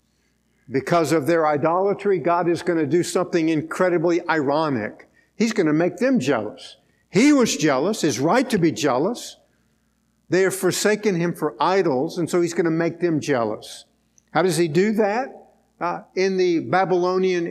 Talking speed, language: 170 wpm, English